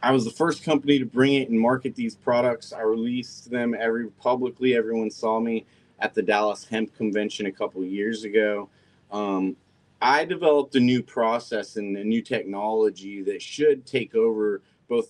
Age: 30-49